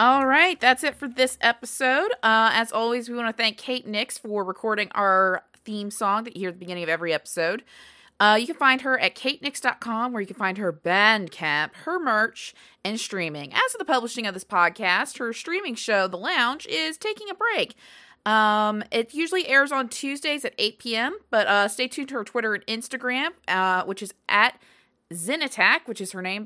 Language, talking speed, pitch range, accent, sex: English, 205 wpm, 195-265 Hz, American, female